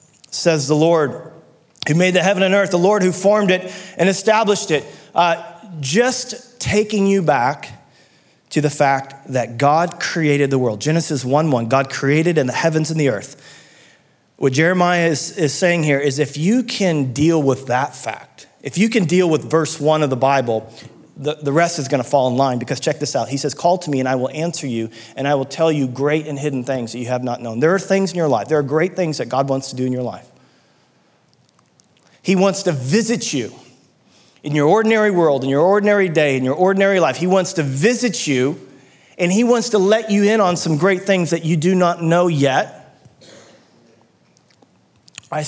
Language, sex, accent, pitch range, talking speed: English, male, American, 135-185 Hz, 210 wpm